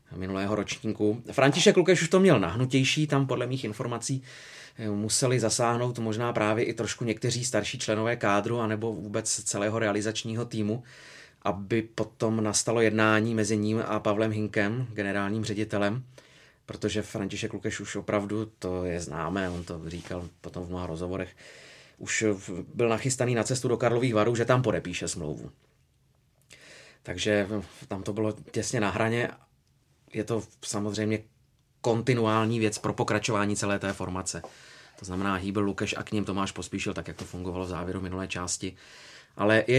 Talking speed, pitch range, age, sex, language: 150 wpm, 100-115 Hz, 30-49, male, Czech